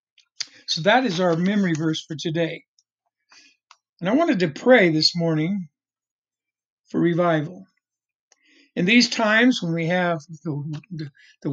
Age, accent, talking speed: 60-79, American, 135 wpm